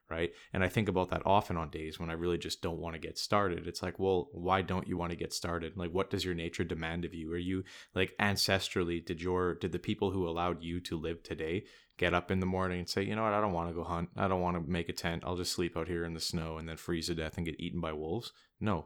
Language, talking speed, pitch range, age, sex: English, 295 wpm, 85-95 Hz, 20-39, male